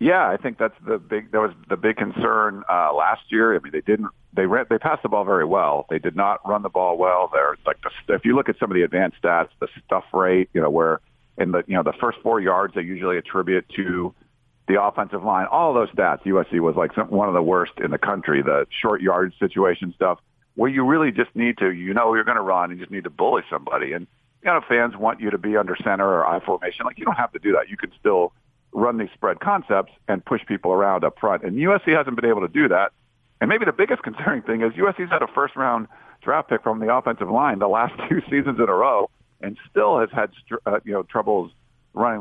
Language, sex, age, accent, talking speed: English, male, 50-69, American, 255 wpm